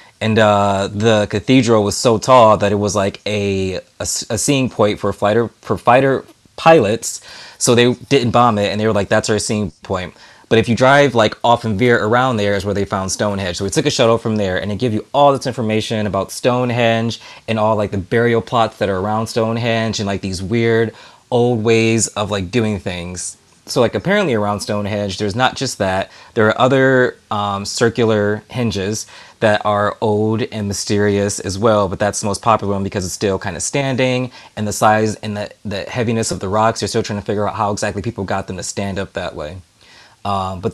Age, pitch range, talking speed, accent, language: 20-39, 100-120 Hz, 215 wpm, American, English